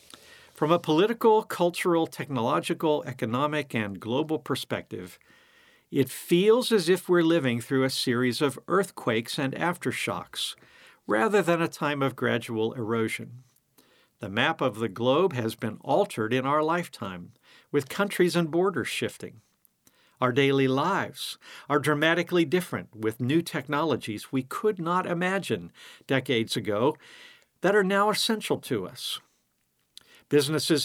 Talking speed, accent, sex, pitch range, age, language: 130 wpm, American, male, 125-185 Hz, 50-69, English